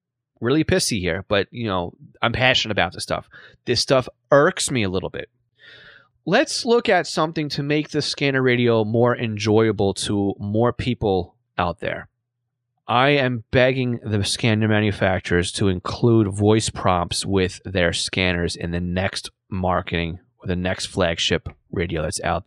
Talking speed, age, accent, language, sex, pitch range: 155 wpm, 30-49, American, English, male, 100-125 Hz